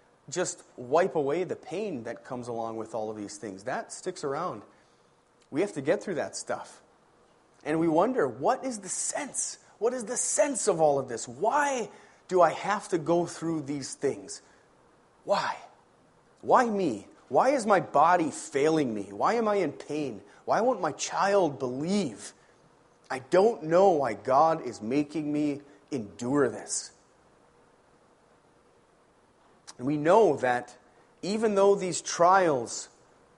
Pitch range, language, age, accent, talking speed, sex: 135-210 Hz, English, 30-49, American, 150 wpm, male